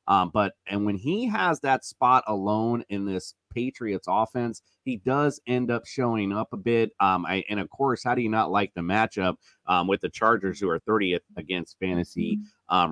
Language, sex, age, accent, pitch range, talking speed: English, male, 30-49, American, 100-125 Hz, 195 wpm